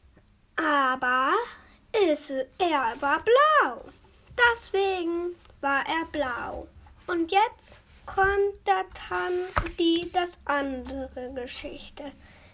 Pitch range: 265-360 Hz